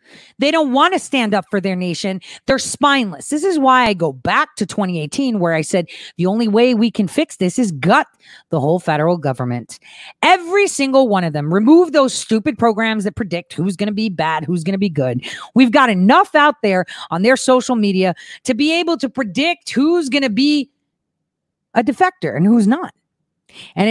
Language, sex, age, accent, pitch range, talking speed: English, female, 40-59, American, 200-285 Hz, 200 wpm